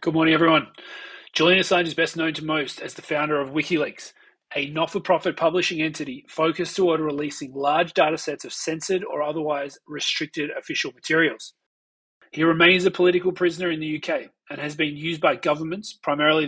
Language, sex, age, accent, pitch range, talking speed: English, male, 30-49, Australian, 150-175 Hz, 170 wpm